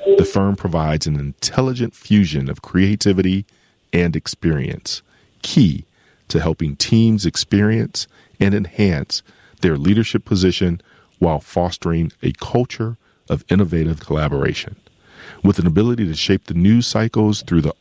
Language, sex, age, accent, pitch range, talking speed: English, male, 40-59, American, 80-105 Hz, 125 wpm